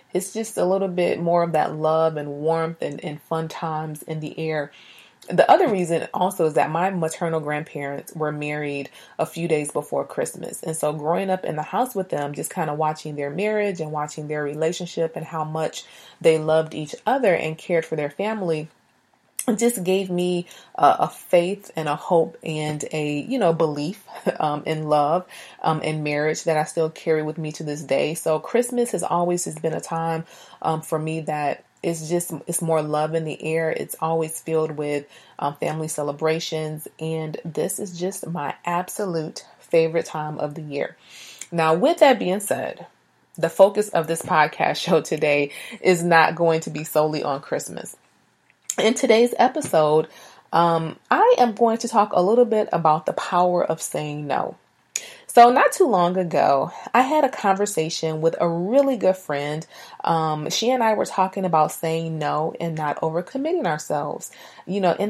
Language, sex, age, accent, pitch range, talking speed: English, female, 30-49, American, 155-185 Hz, 185 wpm